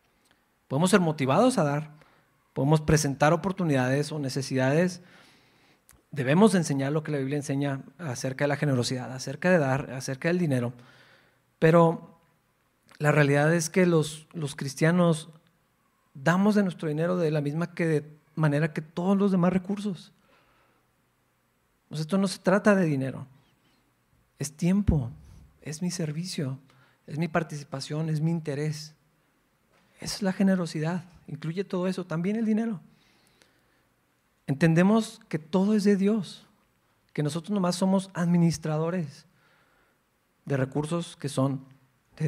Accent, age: Mexican, 40-59